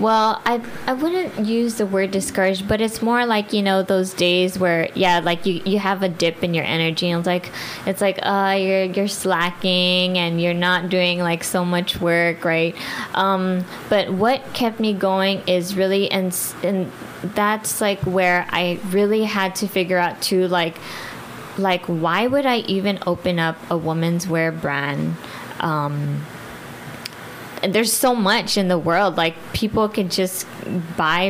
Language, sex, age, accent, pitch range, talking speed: English, female, 20-39, American, 170-195 Hz, 175 wpm